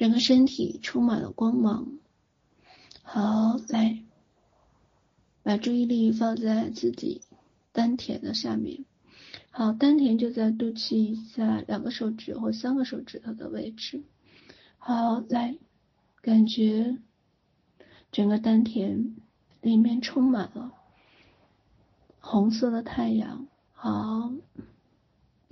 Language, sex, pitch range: Chinese, female, 220-245 Hz